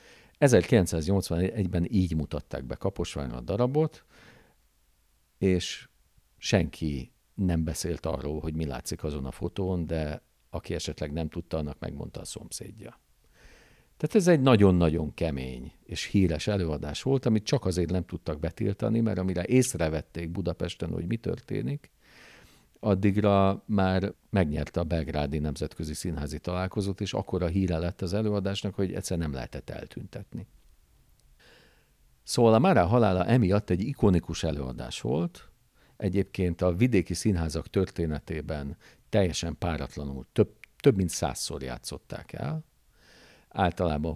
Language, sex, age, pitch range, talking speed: Hungarian, male, 50-69, 80-100 Hz, 125 wpm